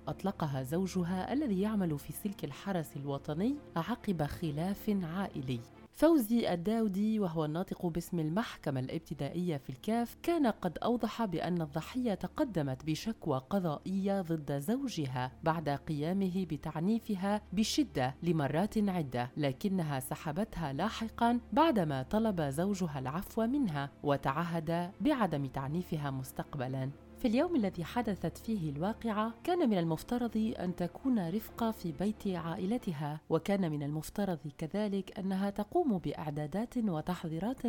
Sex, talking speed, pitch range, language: female, 115 wpm, 155-215 Hz, Arabic